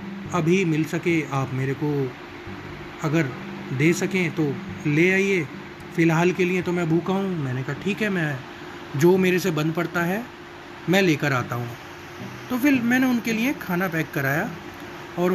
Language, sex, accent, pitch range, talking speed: Hindi, male, native, 165-200 Hz, 170 wpm